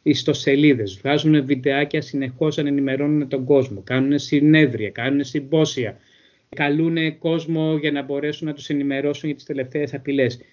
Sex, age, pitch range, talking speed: male, 30-49, 135-170 Hz, 135 wpm